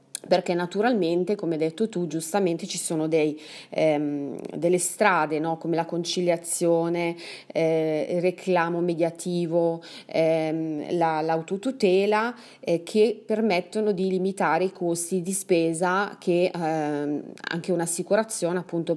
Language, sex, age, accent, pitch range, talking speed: Italian, female, 30-49, native, 160-195 Hz, 120 wpm